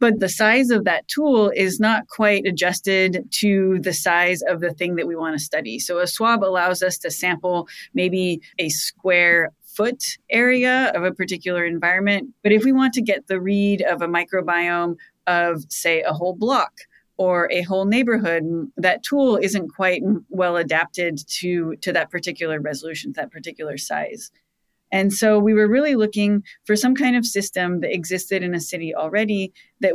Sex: female